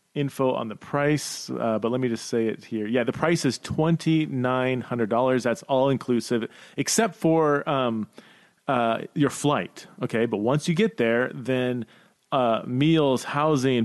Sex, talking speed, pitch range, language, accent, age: male, 150 wpm, 115-150 Hz, English, American, 30-49